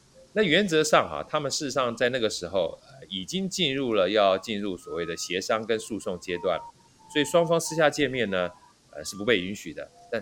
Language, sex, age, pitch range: Chinese, male, 30-49, 95-135 Hz